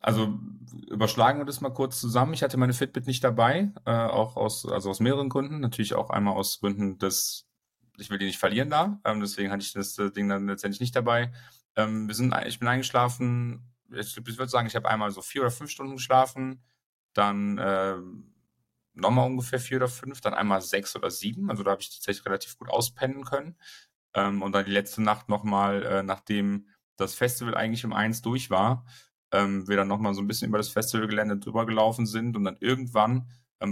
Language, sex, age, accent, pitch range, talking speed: German, male, 40-59, German, 100-125 Hz, 205 wpm